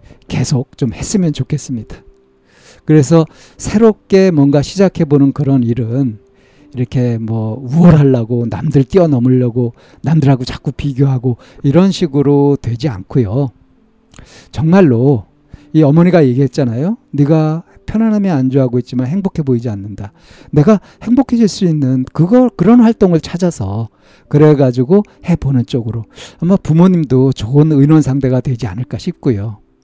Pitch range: 120-155 Hz